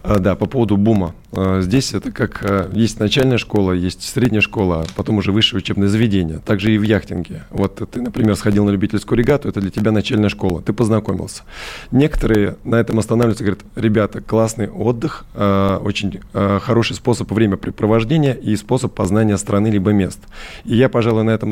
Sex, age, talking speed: male, 20-39, 180 wpm